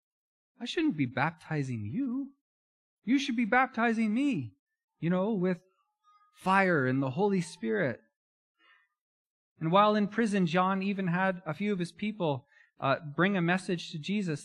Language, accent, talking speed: English, American, 150 wpm